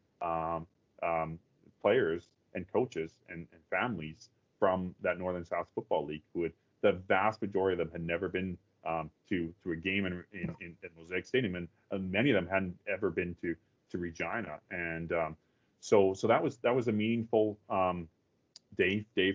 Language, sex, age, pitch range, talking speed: English, male, 30-49, 85-105 Hz, 175 wpm